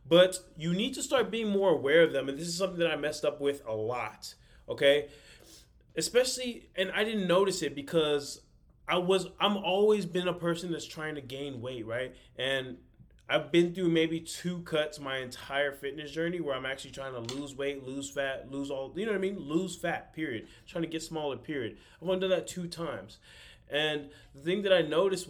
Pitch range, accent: 140-180 Hz, American